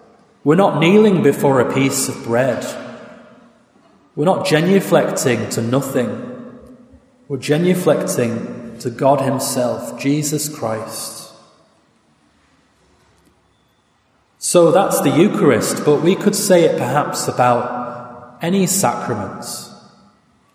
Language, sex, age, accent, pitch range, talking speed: English, male, 30-49, British, 120-150 Hz, 95 wpm